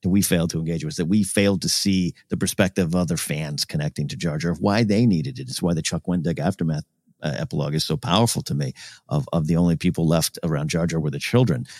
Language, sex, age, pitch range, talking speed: English, male, 50-69, 90-115 Hz, 250 wpm